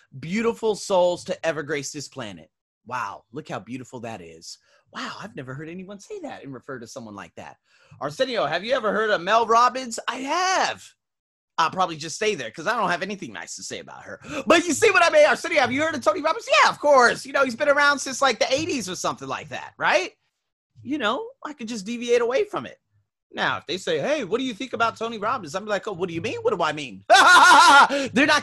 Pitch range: 140-235 Hz